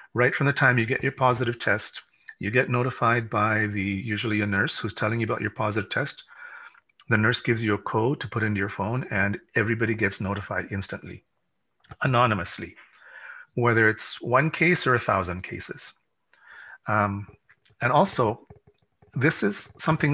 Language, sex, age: English, male, 40-59